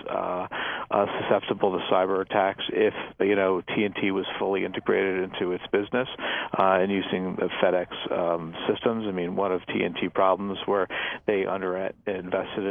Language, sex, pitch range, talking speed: English, male, 95-100 Hz, 170 wpm